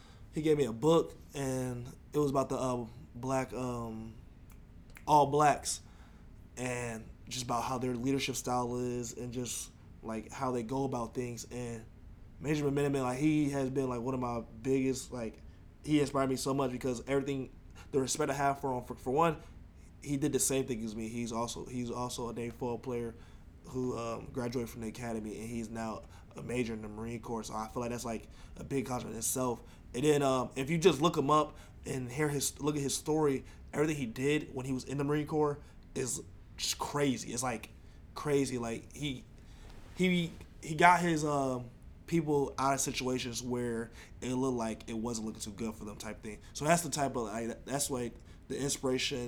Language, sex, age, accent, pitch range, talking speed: English, male, 20-39, American, 115-135 Hz, 205 wpm